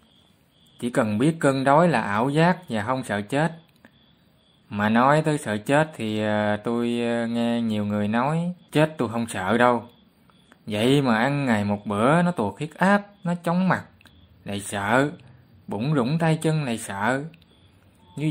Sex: male